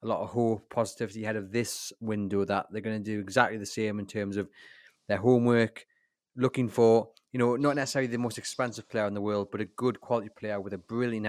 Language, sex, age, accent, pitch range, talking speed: English, male, 30-49, British, 100-125 Hz, 230 wpm